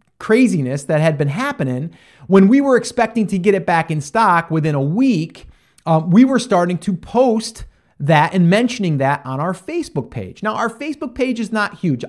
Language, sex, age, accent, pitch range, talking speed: English, male, 30-49, American, 135-195 Hz, 195 wpm